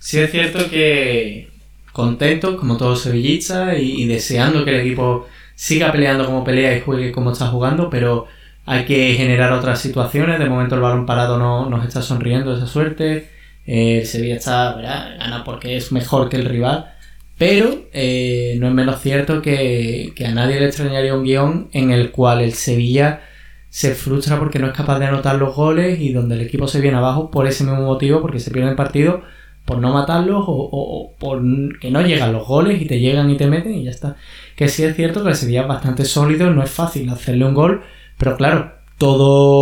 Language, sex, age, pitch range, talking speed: Spanish, male, 20-39, 125-150 Hz, 205 wpm